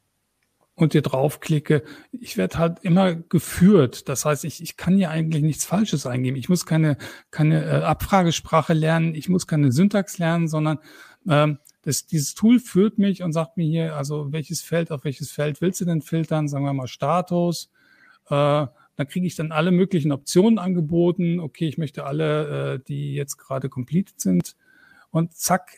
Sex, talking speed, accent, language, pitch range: male, 175 wpm, German, German, 140-170 Hz